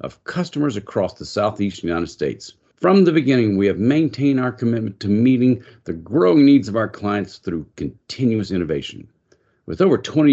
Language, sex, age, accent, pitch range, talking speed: English, male, 50-69, American, 100-150 Hz, 170 wpm